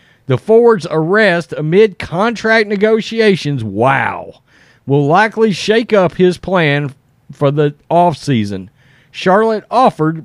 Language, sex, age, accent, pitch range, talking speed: English, male, 40-59, American, 145-210 Hz, 105 wpm